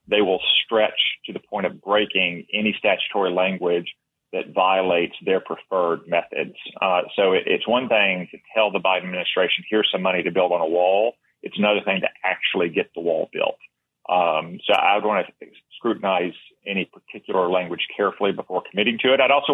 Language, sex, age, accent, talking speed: English, male, 40-59, American, 185 wpm